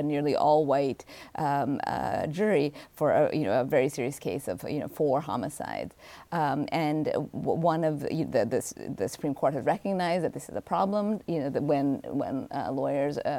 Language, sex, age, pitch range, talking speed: English, female, 30-49, 145-175 Hz, 195 wpm